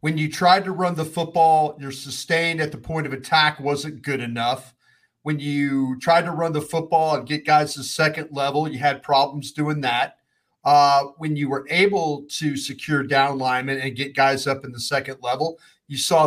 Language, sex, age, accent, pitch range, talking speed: English, male, 40-59, American, 140-155 Hz, 205 wpm